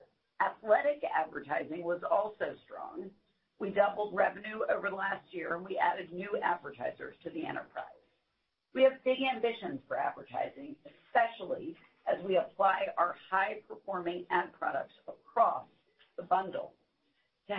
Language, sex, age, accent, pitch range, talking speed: English, female, 50-69, American, 180-245 Hz, 130 wpm